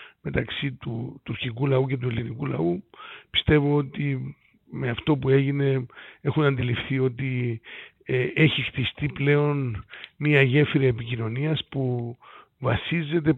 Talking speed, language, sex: 115 wpm, Greek, male